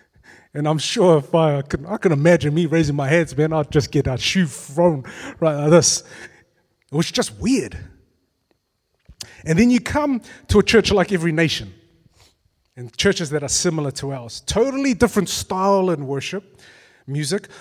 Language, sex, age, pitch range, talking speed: English, male, 30-49, 145-190 Hz, 165 wpm